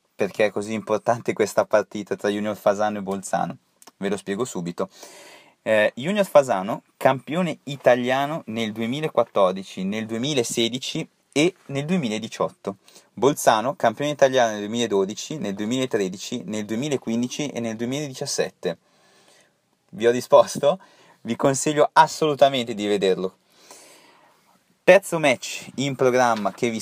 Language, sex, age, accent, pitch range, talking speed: Italian, male, 30-49, native, 110-135 Hz, 120 wpm